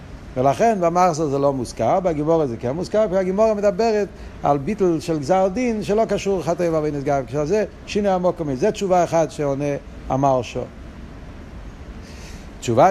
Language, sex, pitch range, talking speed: Hebrew, male, 125-190 Hz, 165 wpm